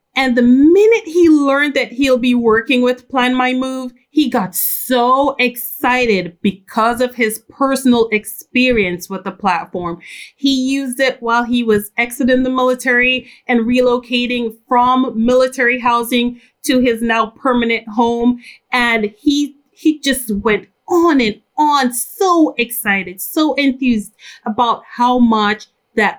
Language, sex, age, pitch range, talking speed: English, female, 30-49, 220-265 Hz, 140 wpm